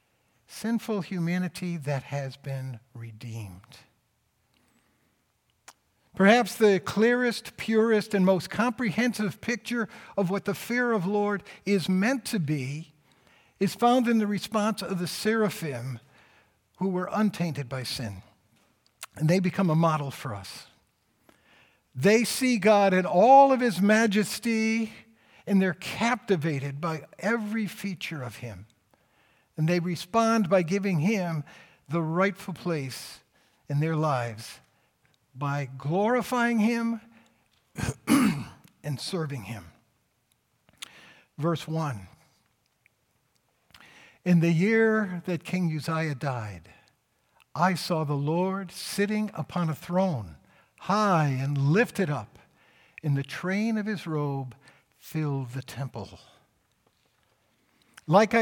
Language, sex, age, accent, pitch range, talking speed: English, male, 60-79, American, 140-210 Hz, 110 wpm